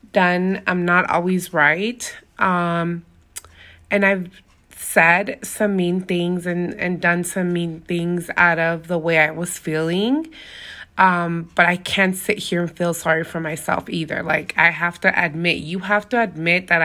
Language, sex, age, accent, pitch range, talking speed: English, female, 20-39, American, 170-200 Hz, 165 wpm